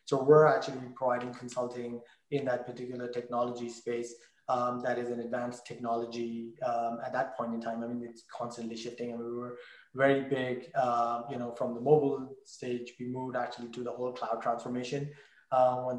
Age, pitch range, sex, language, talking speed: 20-39, 120-140 Hz, male, English, 175 wpm